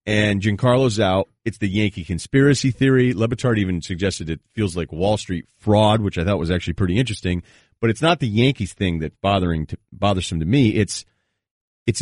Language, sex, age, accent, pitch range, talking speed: English, male, 40-59, American, 95-120 Hz, 190 wpm